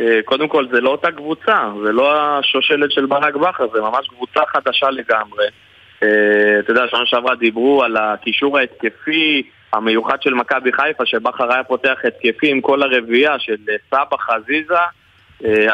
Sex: male